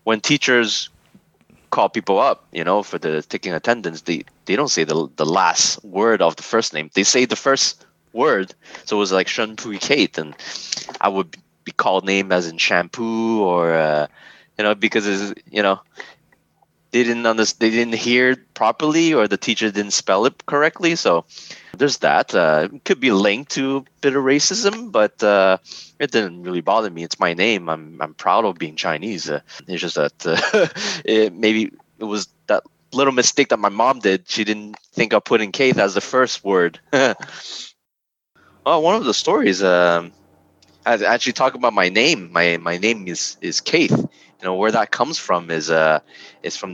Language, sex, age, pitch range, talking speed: English, male, 20-39, 85-115 Hz, 195 wpm